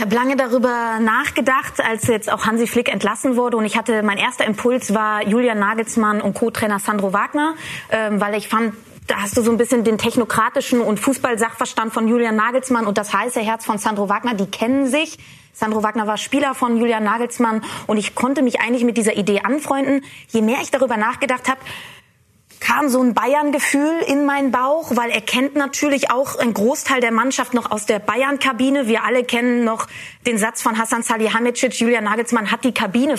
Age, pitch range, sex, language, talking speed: 20-39, 220-260 Hz, female, German, 195 wpm